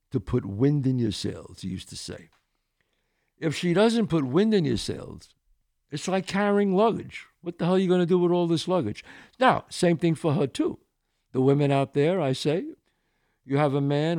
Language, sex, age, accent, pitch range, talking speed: English, male, 60-79, American, 125-175 Hz, 210 wpm